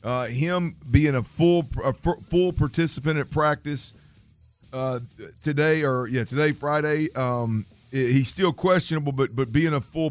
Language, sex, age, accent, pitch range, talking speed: English, male, 50-69, American, 115-145 Hz, 150 wpm